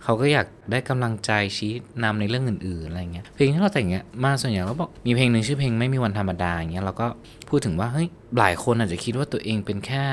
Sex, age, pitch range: male, 20-39, 95-120 Hz